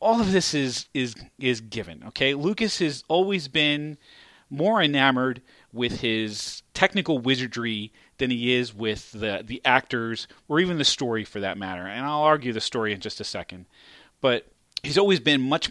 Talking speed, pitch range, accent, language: 175 wpm, 115-155 Hz, American, English